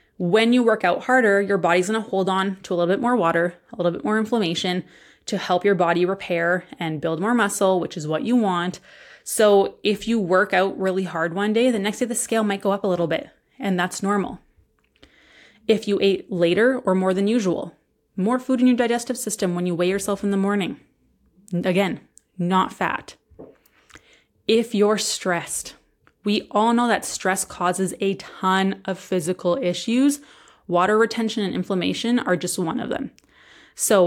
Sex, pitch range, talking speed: female, 180-220 Hz, 190 wpm